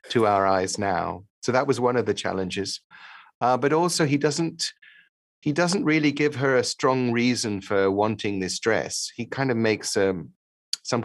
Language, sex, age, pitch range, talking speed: English, male, 40-59, 100-130 Hz, 185 wpm